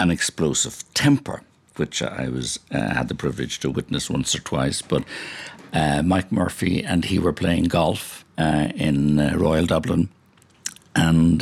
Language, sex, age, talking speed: English, male, 60-79, 160 wpm